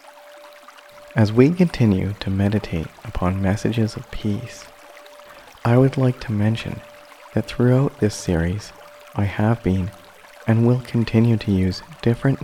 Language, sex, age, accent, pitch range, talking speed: English, male, 40-59, American, 95-120 Hz, 130 wpm